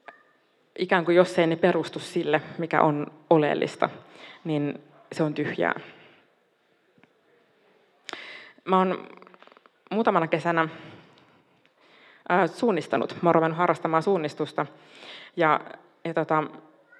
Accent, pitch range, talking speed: native, 155-185 Hz, 100 wpm